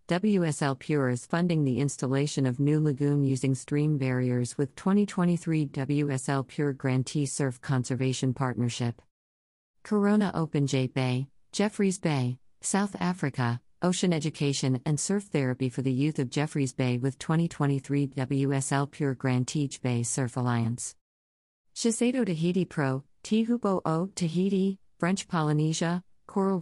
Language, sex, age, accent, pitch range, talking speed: English, female, 50-69, American, 130-165 Hz, 130 wpm